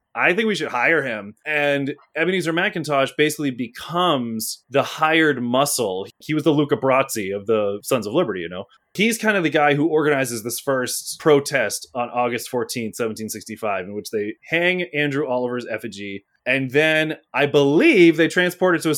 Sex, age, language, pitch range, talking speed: male, 20-39, English, 120-150 Hz, 175 wpm